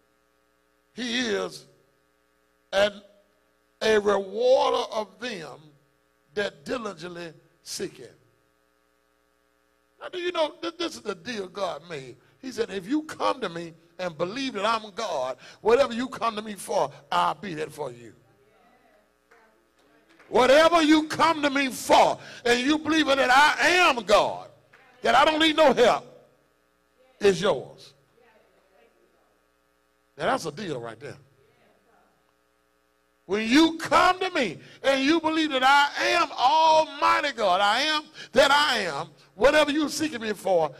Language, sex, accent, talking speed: English, male, American, 140 wpm